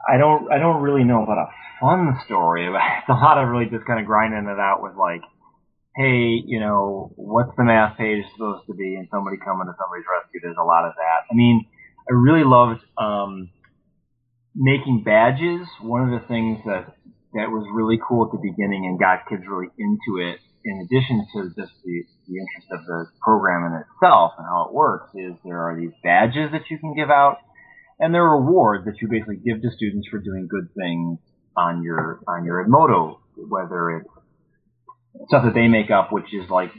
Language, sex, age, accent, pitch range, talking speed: English, male, 30-49, American, 90-120 Hz, 205 wpm